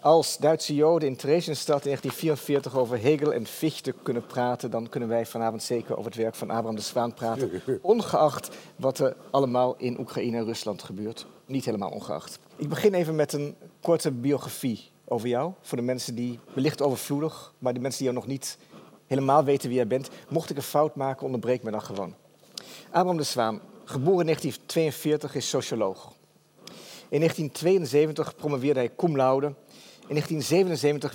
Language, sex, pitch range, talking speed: Dutch, male, 120-150 Hz, 170 wpm